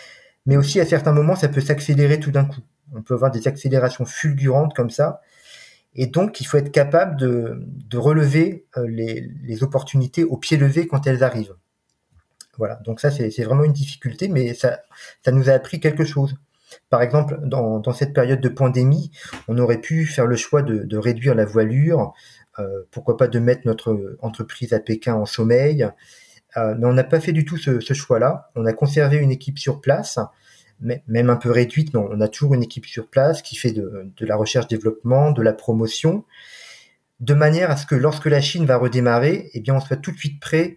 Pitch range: 120-150 Hz